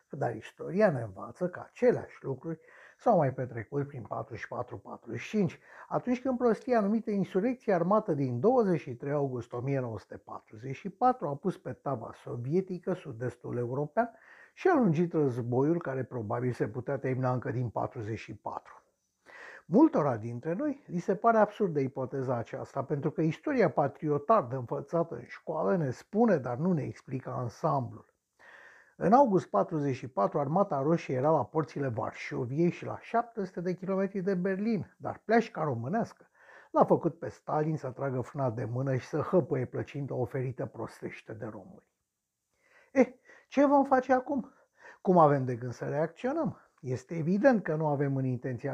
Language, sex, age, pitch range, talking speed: Romanian, male, 60-79, 130-195 Hz, 150 wpm